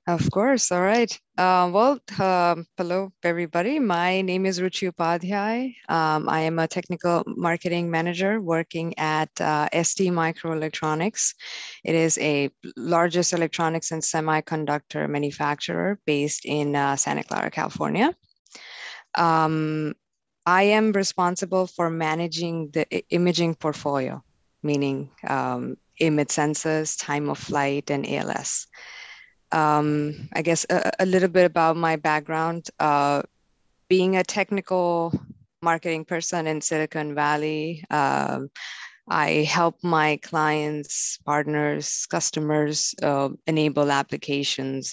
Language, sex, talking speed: English, female, 115 wpm